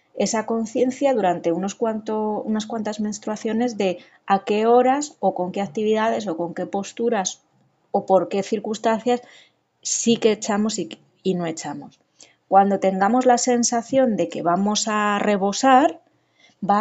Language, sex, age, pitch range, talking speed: Spanish, female, 20-39, 185-245 Hz, 145 wpm